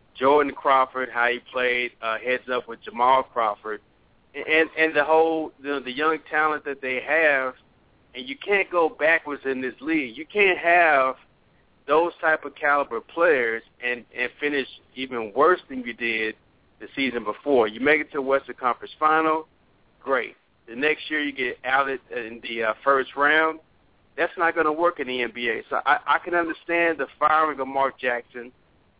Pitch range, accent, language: 125-155 Hz, American, English